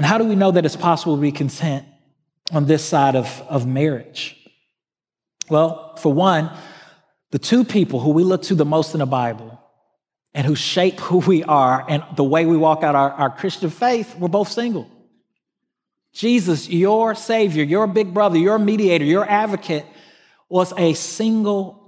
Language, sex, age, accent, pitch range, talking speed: English, male, 40-59, American, 155-215 Hz, 175 wpm